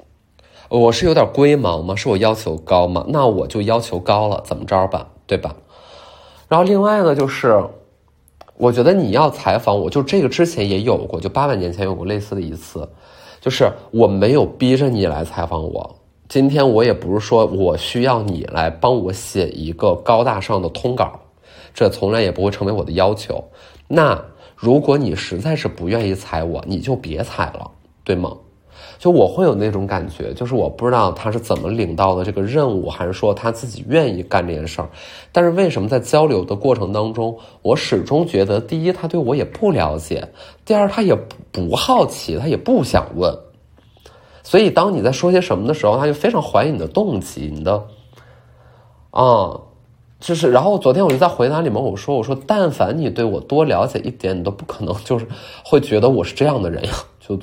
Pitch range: 95-140 Hz